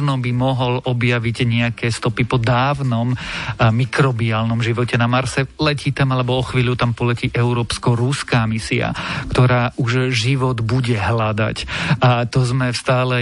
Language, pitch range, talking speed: Slovak, 120-135 Hz, 135 wpm